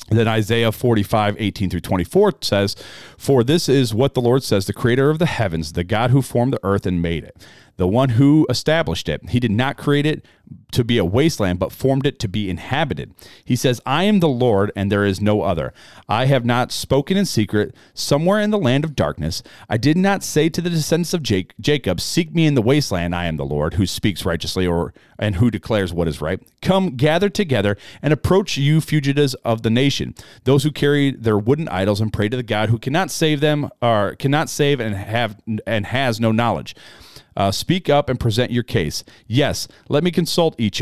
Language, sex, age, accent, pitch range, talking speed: English, male, 40-59, American, 105-145 Hz, 215 wpm